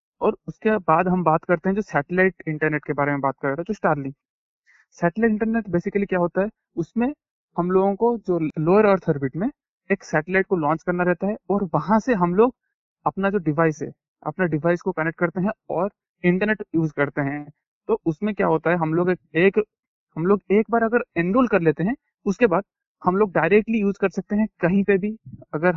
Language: Hindi